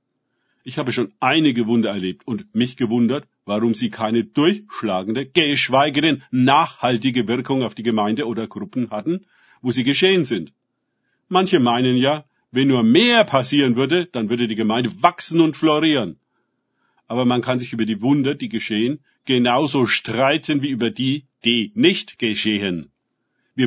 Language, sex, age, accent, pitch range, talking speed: German, male, 50-69, German, 115-150 Hz, 150 wpm